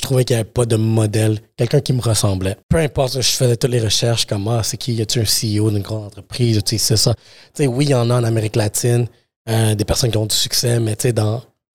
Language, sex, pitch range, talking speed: French, male, 110-130 Hz, 255 wpm